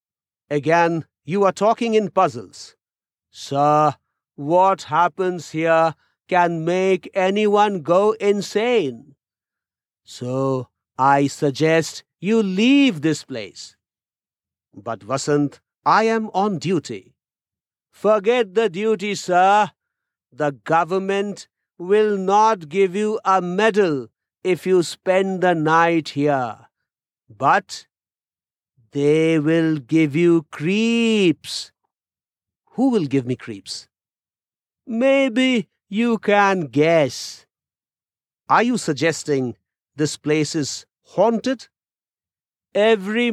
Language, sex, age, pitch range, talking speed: English, male, 50-69, 150-210 Hz, 95 wpm